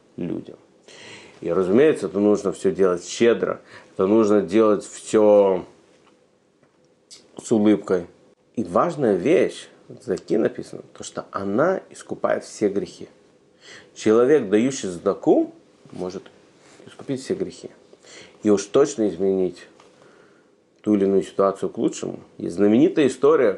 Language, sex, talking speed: Russian, male, 115 wpm